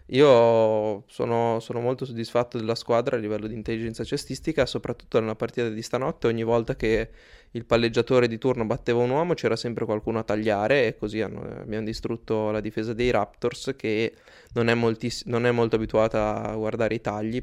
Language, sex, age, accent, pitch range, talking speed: Italian, male, 20-39, native, 110-120 Hz, 185 wpm